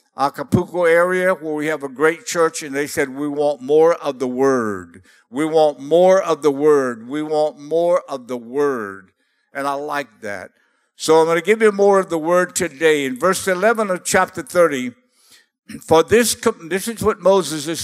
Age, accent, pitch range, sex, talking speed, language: 60-79, American, 155-200 Hz, male, 190 wpm, English